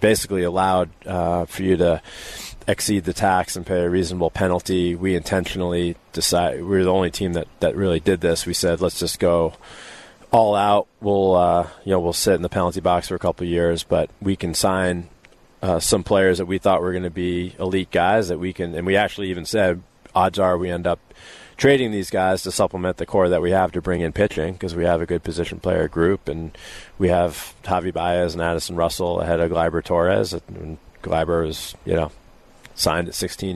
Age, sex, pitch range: 30-49, male, 85-95 Hz